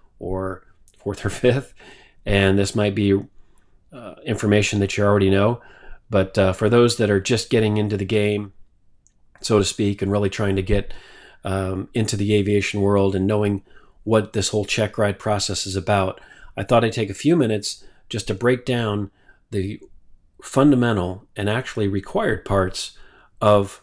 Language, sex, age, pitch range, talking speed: English, male, 40-59, 95-110 Hz, 165 wpm